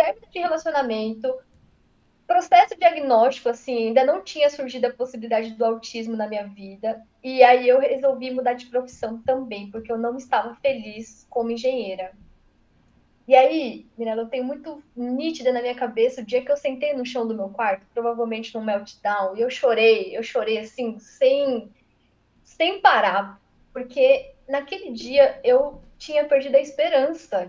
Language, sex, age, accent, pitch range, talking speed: Portuguese, female, 10-29, Brazilian, 230-290 Hz, 155 wpm